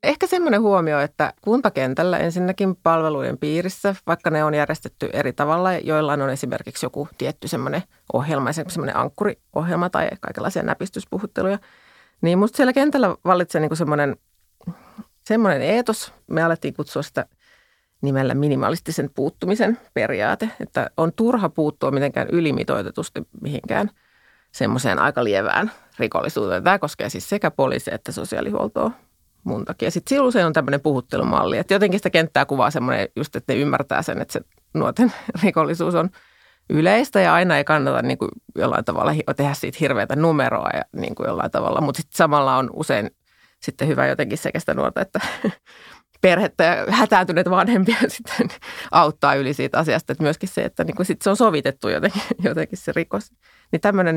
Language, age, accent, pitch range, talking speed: Finnish, 30-49, native, 145-205 Hz, 150 wpm